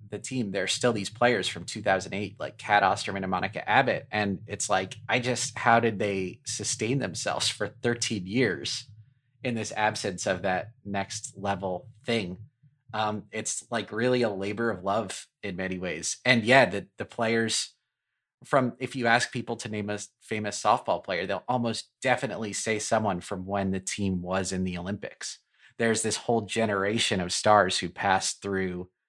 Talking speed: 175 wpm